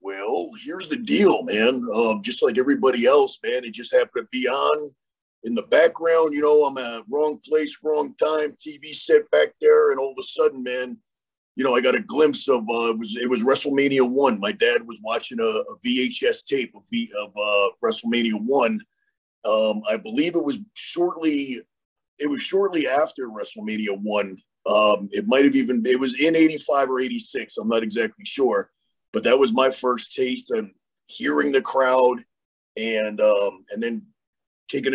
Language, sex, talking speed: English, male, 180 wpm